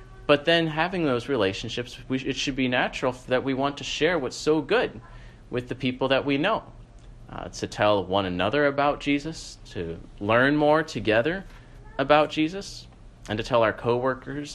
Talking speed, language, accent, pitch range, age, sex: 170 wpm, English, American, 115-150 Hz, 30-49, male